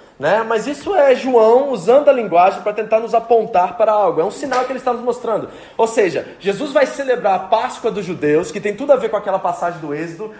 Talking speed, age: 235 wpm, 20-39